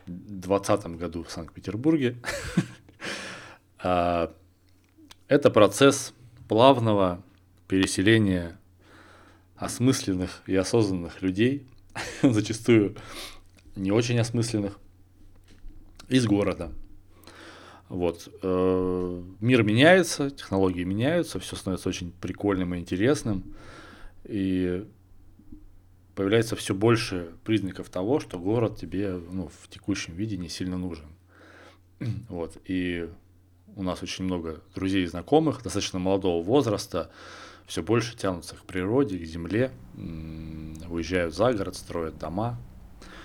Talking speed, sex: 95 wpm, male